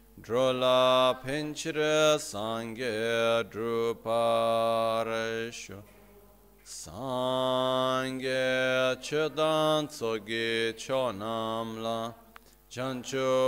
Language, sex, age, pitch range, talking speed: Italian, male, 30-49, 110-130 Hz, 50 wpm